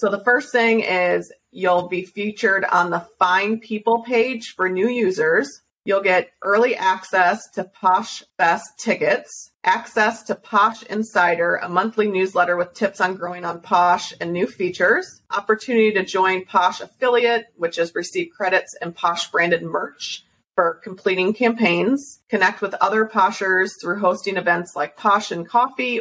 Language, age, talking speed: English, 30-49, 155 wpm